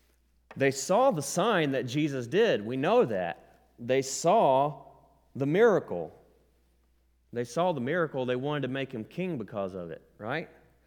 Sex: male